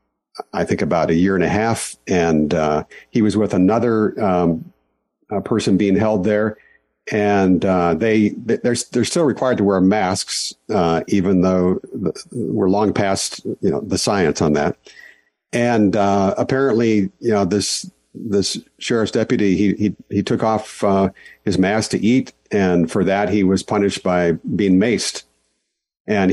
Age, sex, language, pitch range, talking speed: 50-69, male, English, 90-110 Hz, 160 wpm